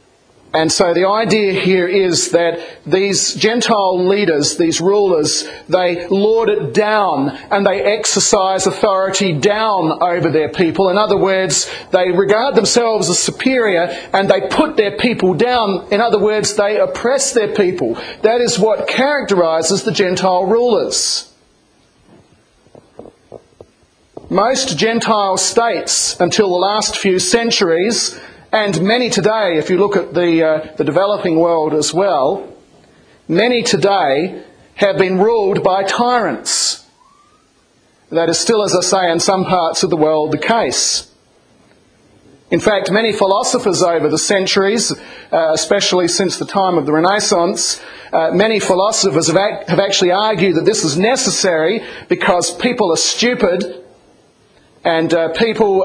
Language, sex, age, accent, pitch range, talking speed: English, male, 40-59, Australian, 175-215 Hz, 140 wpm